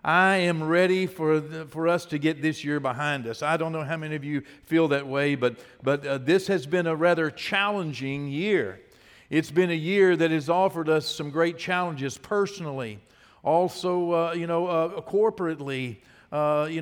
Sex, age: male, 50-69